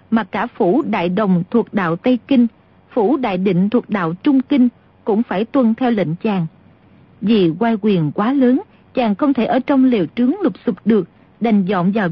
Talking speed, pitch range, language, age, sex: 200 wpm, 205-265 Hz, Vietnamese, 40-59, female